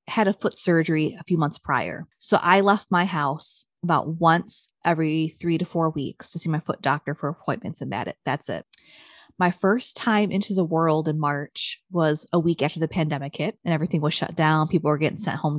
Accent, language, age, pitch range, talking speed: American, English, 20-39, 155-190 Hz, 220 wpm